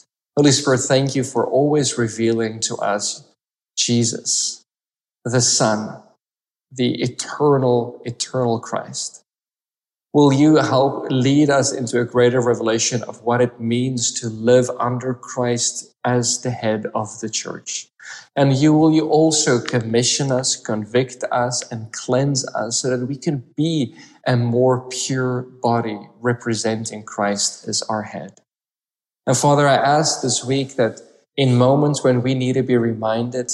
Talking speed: 145 wpm